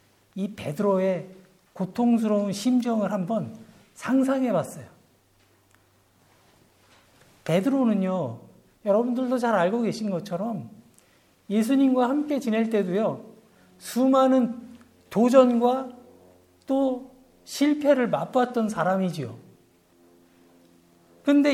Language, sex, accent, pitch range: Korean, male, native, 185-250 Hz